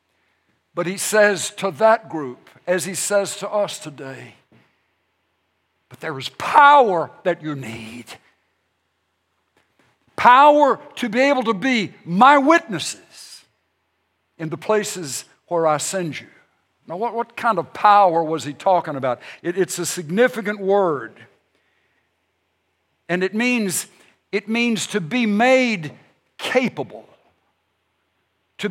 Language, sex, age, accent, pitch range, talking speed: English, male, 60-79, American, 155-260 Hz, 120 wpm